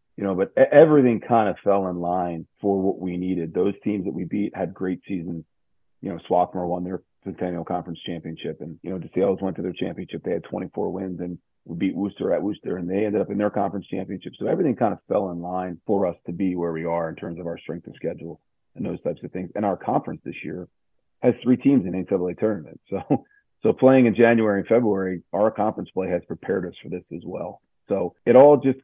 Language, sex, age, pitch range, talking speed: English, male, 40-59, 90-105 Hz, 235 wpm